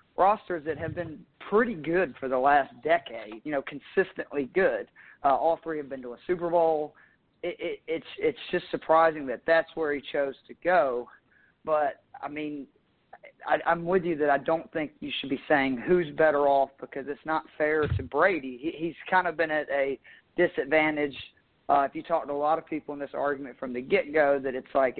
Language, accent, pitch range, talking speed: English, American, 140-170 Hz, 205 wpm